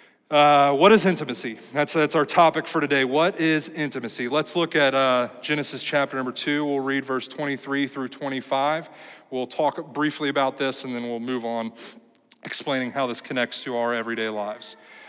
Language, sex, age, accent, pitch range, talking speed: English, male, 30-49, American, 135-165 Hz, 180 wpm